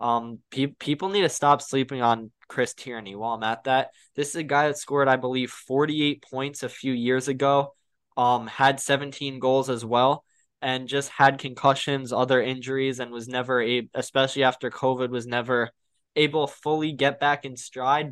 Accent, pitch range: American, 125-140 Hz